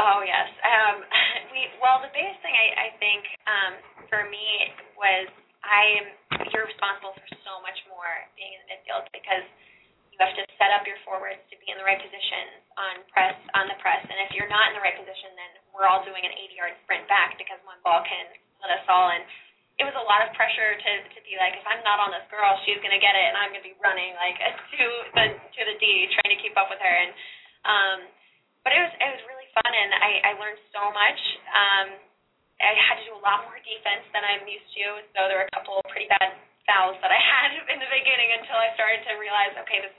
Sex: female